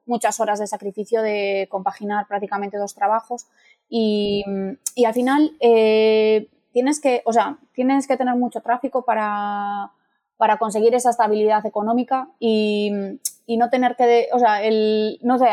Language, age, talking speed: Spanish, 20-39, 150 wpm